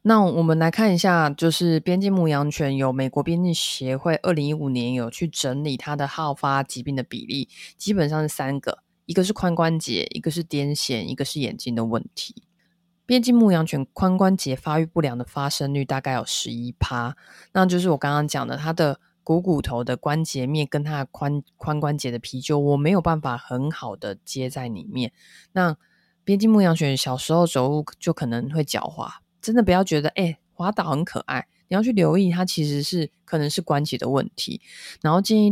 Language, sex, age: Chinese, female, 20-39